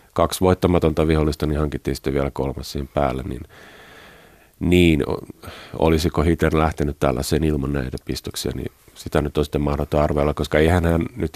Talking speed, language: 150 wpm, Finnish